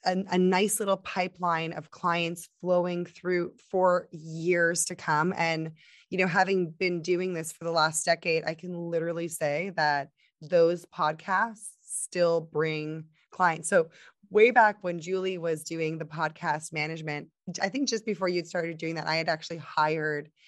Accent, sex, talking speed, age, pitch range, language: American, female, 165 wpm, 20-39, 160-185 Hz, English